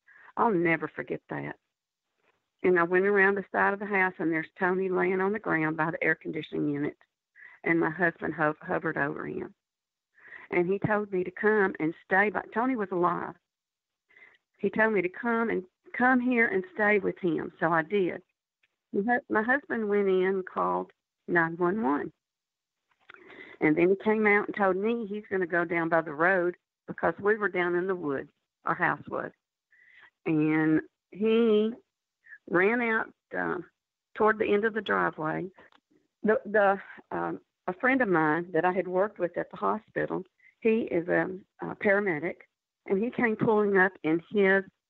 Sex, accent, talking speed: female, American, 170 wpm